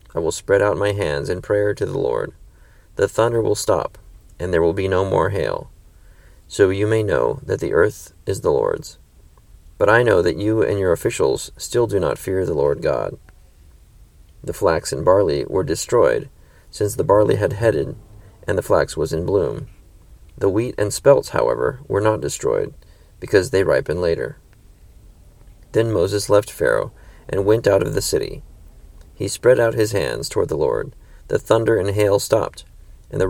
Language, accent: English, American